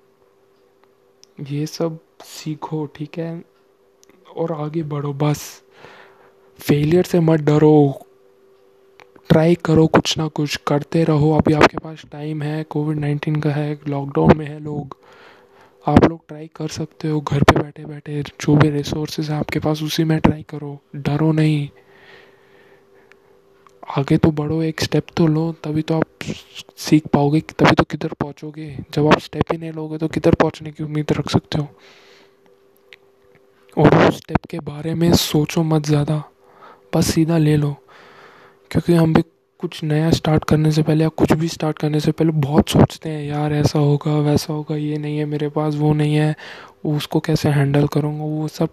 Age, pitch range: 20-39, 150-160 Hz